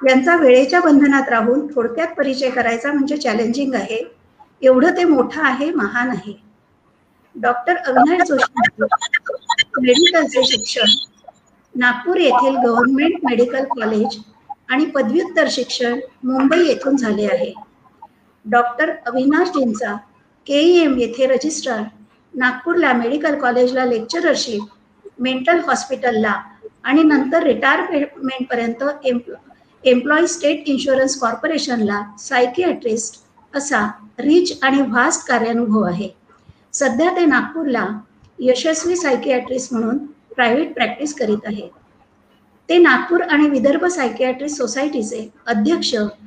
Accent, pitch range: native, 240-300 Hz